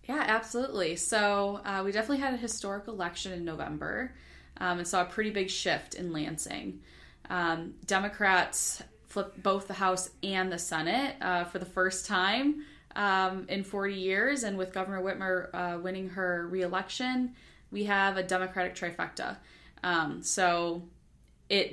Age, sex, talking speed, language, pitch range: 10-29, female, 150 wpm, English, 170-200 Hz